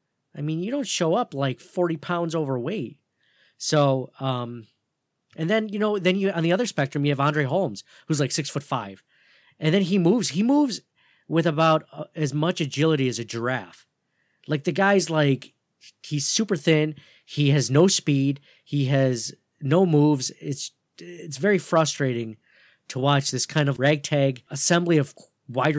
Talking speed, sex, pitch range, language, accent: 170 wpm, male, 125-155 Hz, English, American